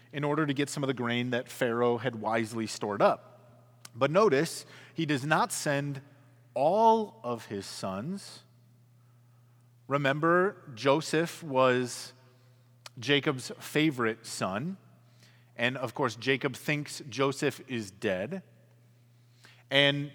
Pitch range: 120-155 Hz